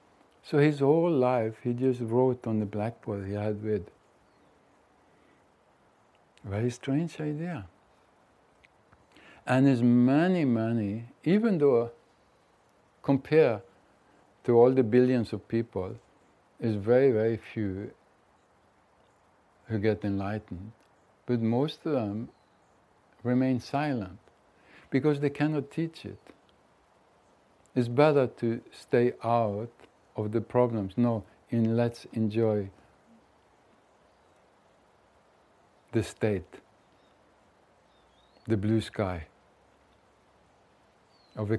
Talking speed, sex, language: 95 wpm, male, English